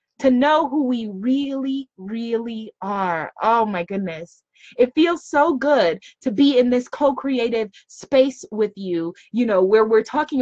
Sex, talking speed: female, 155 wpm